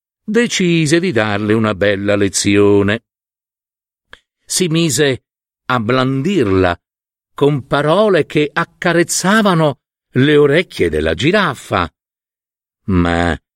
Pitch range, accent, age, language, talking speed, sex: 100-165 Hz, native, 50-69, Italian, 85 wpm, male